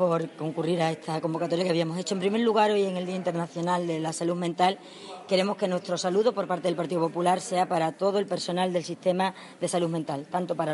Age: 20-39